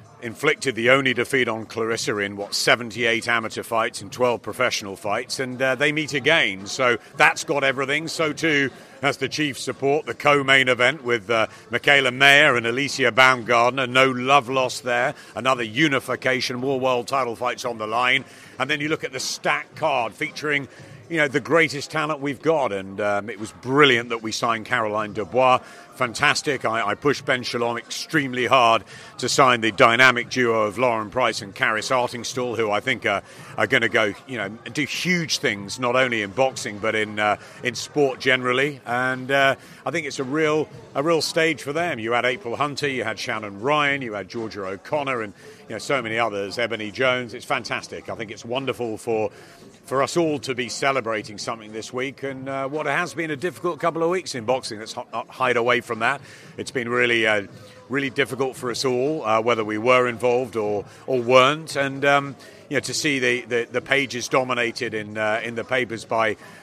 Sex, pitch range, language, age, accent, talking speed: male, 115-140 Hz, English, 40-59, British, 205 wpm